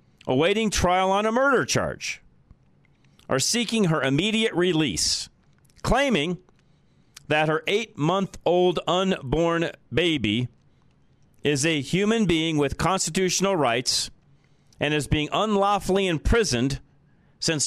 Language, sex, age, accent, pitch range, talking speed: English, male, 40-59, American, 100-150 Hz, 100 wpm